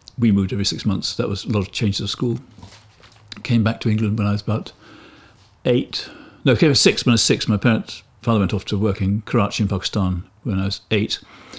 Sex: male